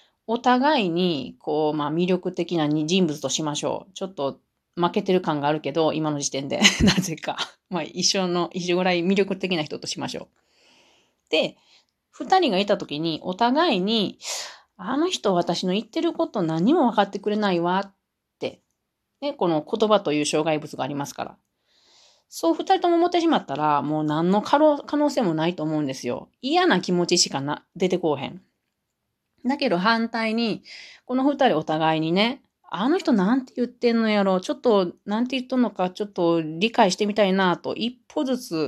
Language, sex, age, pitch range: Japanese, female, 30-49, 160-245 Hz